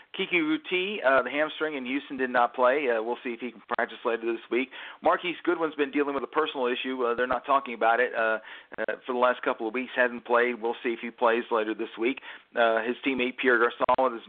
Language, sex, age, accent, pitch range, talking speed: English, male, 40-59, American, 120-145 Hz, 245 wpm